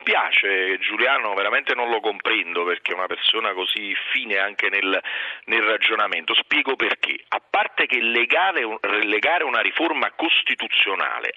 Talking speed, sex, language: 135 wpm, male, Italian